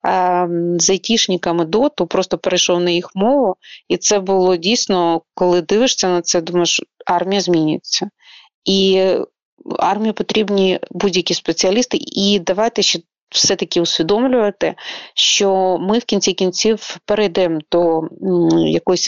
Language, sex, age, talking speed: Ukrainian, female, 30-49, 115 wpm